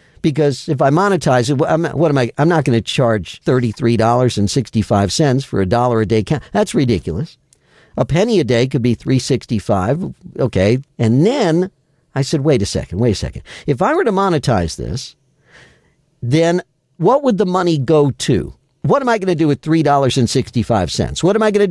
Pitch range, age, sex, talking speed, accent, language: 120-165 Hz, 50-69, male, 180 wpm, American, English